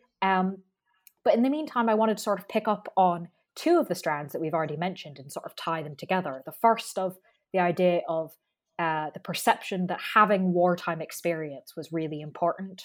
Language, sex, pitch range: English, female, 160-195 Hz